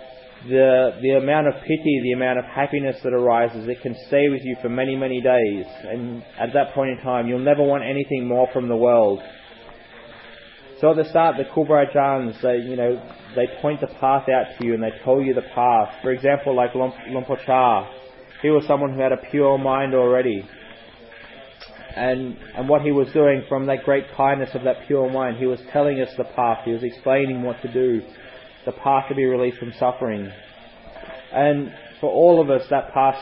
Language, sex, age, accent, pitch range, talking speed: English, male, 20-39, Australian, 125-135 Hz, 200 wpm